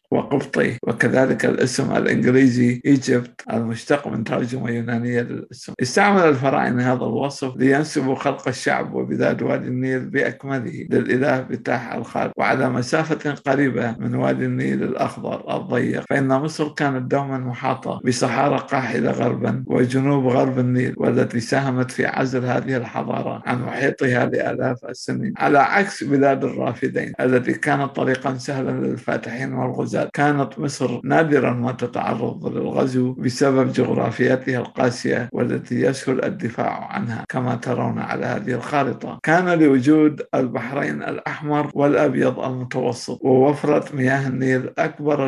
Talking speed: 120 wpm